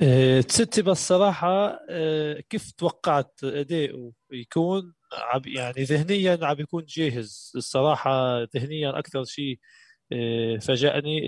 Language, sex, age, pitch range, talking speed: Arabic, male, 20-39, 130-165 Hz, 90 wpm